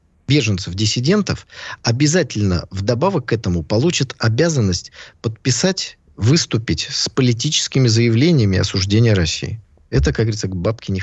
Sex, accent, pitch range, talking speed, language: male, native, 100-135 Hz, 115 wpm, Russian